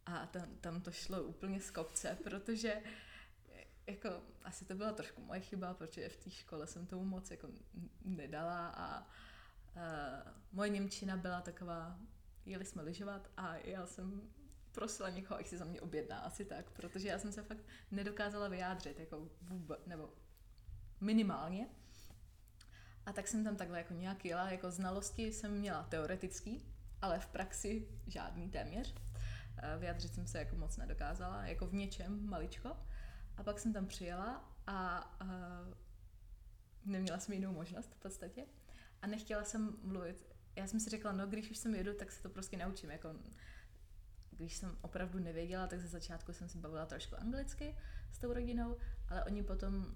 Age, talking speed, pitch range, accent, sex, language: 20-39, 160 wpm, 160-200 Hz, native, female, Czech